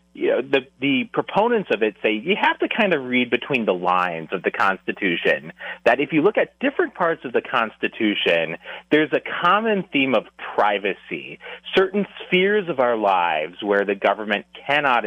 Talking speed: 180 wpm